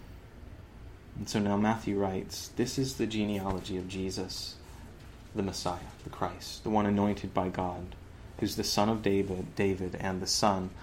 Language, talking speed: English, 160 wpm